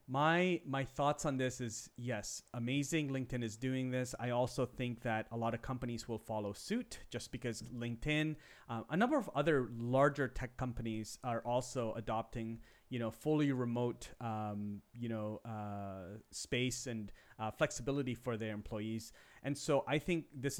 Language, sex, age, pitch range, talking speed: English, male, 30-49, 115-140 Hz, 165 wpm